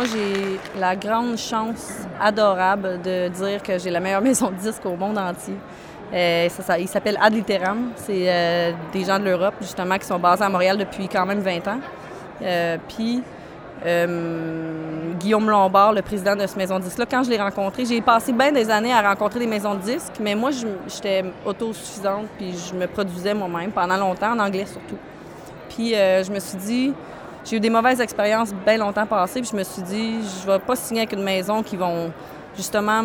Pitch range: 185-225 Hz